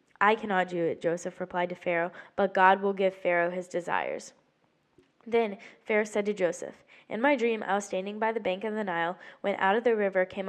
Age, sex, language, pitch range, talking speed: 10-29, female, English, 185-215 Hz, 215 wpm